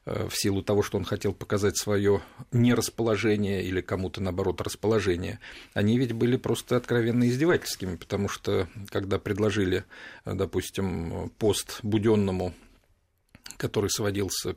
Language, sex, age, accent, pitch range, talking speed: Russian, male, 40-59, native, 100-120 Hz, 115 wpm